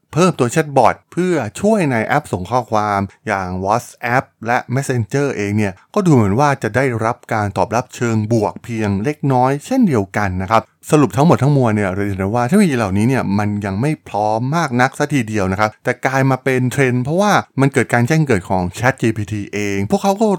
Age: 20-39